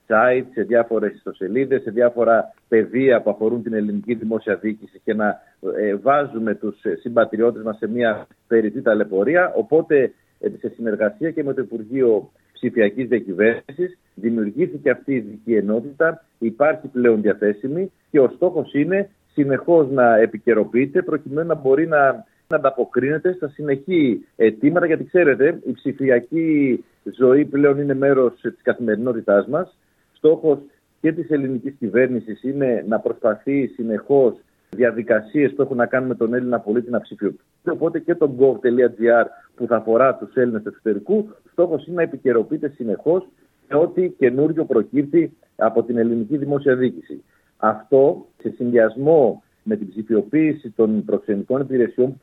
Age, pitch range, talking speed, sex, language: 50-69, 110-145 Hz, 140 wpm, male, Greek